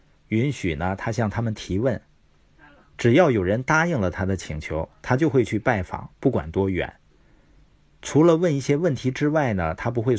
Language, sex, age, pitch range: Chinese, male, 50-69, 90-135 Hz